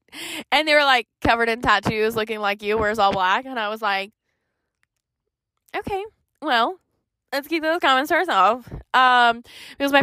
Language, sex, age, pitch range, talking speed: English, female, 20-39, 190-225 Hz, 170 wpm